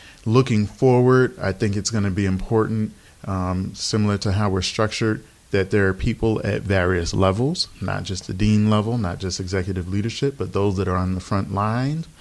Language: English